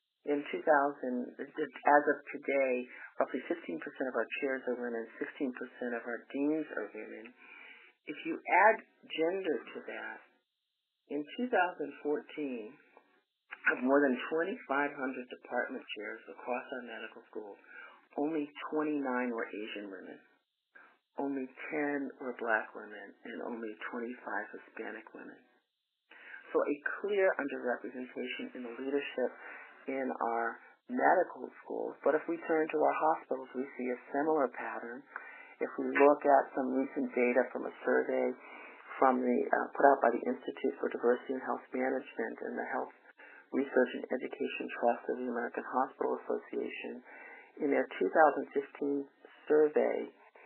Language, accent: English, American